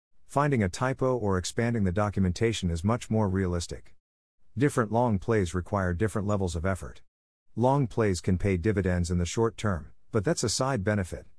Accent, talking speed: American, 175 wpm